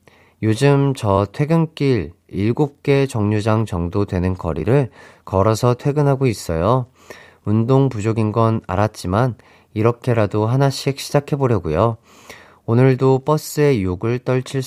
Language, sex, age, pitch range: Korean, male, 30-49, 95-130 Hz